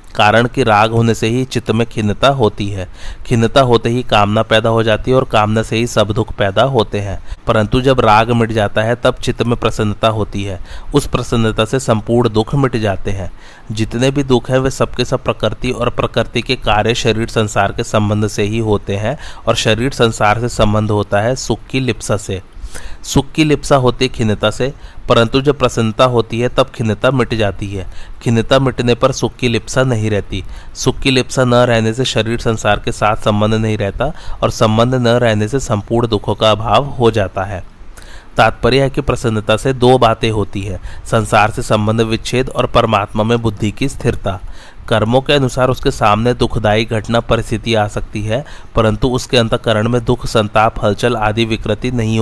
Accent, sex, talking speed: native, male, 185 wpm